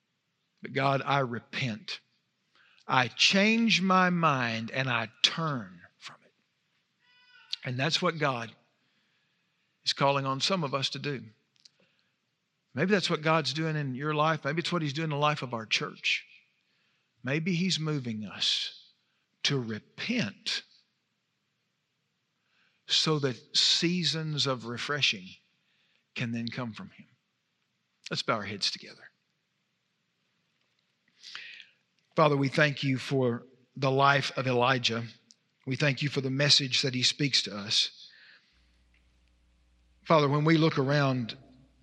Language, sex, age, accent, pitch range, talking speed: English, male, 50-69, American, 110-150 Hz, 130 wpm